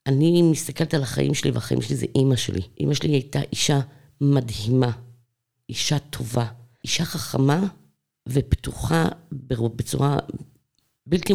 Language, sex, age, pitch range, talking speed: Hebrew, female, 50-69, 115-150 Hz, 115 wpm